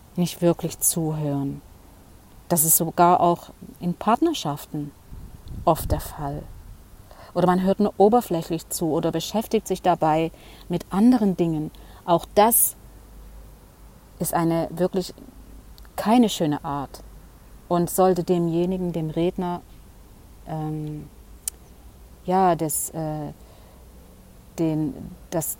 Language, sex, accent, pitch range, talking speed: German, female, German, 145-175 Hz, 100 wpm